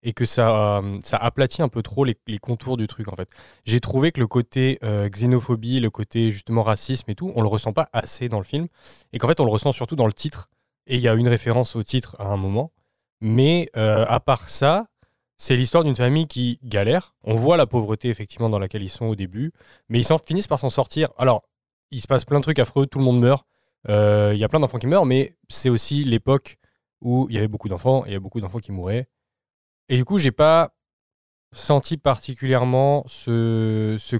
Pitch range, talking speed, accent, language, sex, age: 110-140 Hz, 230 wpm, French, French, male, 20-39